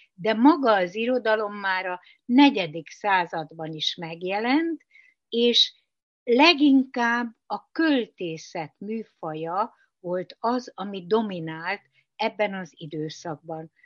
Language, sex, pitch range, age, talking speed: Hungarian, female, 180-265 Hz, 60-79, 95 wpm